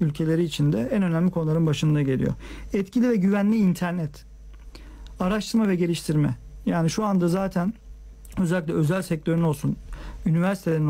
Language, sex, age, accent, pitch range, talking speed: Turkish, male, 50-69, native, 155-190 Hz, 130 wpm